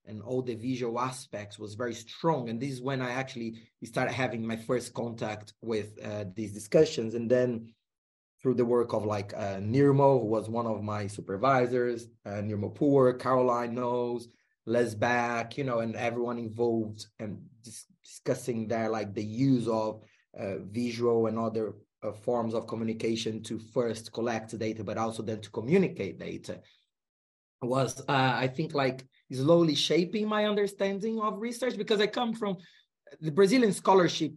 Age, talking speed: 30-49, 160 wpm